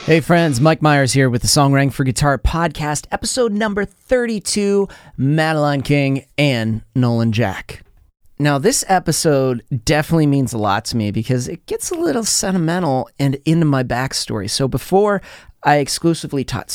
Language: English